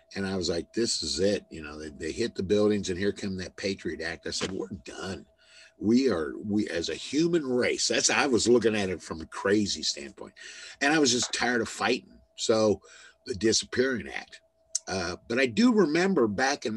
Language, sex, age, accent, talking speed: English, male, 50-69, American, 210 wpm